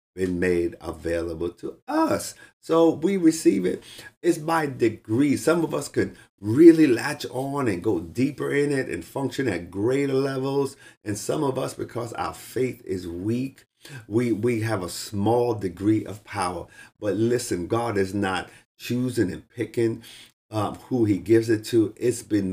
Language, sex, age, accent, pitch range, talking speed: English, male, 50-69, American, 100-135 Hz, 165 wpm